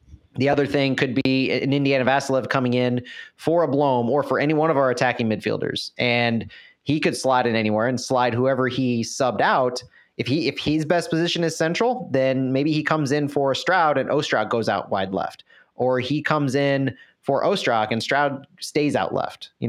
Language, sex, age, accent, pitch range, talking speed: English, male, 30-49, American, 125-145 Hz, 200 wpm